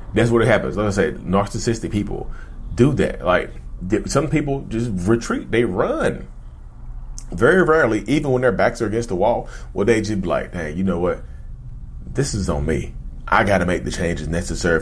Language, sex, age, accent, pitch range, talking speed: English, male, 30-49, American, 80-115 Hz, 195 wpm